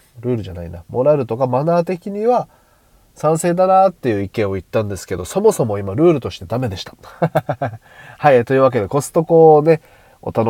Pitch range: 100-150 Hz